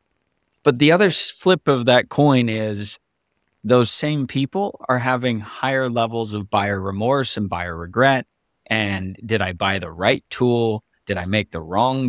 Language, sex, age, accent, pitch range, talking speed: English, male, 30-49, American, 105-135 Hz, 165 wpm